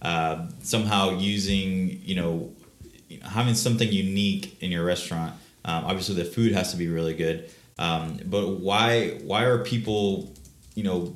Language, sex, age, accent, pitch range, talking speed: English, male, 20-39, American, 85-105 Hz, 150 wpm